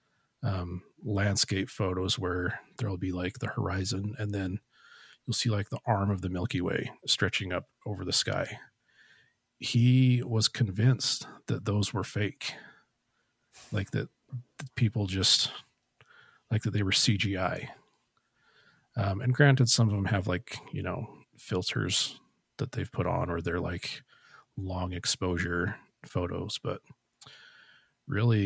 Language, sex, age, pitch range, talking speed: English, male, 40-59, 95-120 Hz, 135 wpm